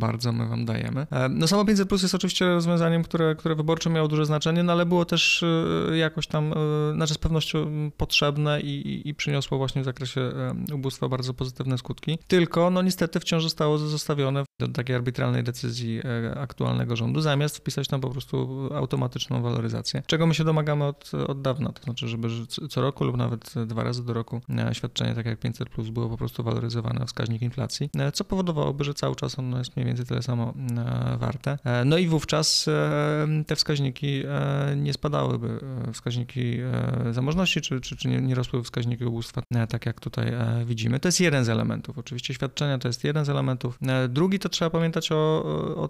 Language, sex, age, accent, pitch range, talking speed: Polish, male, 30-49, native, 120-150 Hz, 175 wpm